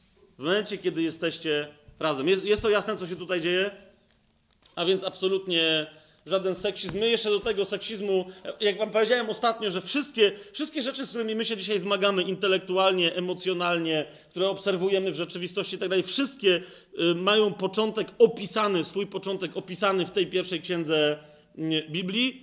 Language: Polish